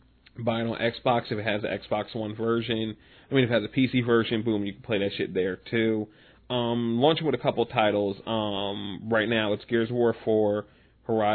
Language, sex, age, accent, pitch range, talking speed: English, male, 30-49, American, 105-120 Hz, 220 wpm